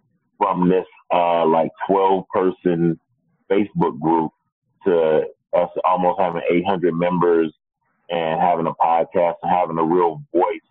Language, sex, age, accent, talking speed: English, male, 30-49, American, 125 wpm